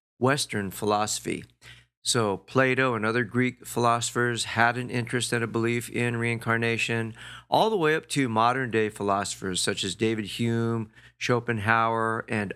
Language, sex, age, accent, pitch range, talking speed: English, male, 50-69, American, 110-130 Hz, 140 wpm